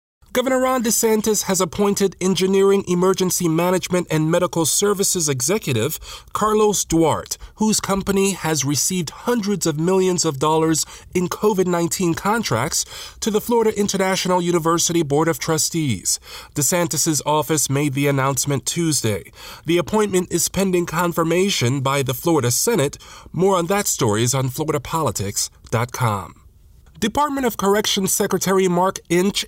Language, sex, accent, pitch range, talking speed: English, male, American, 140-190 Hz, 125 wpm